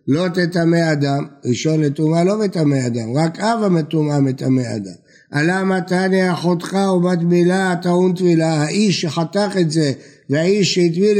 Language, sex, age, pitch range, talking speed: Hebrew, male, 60-79, 145-185 Hz, 140 wpm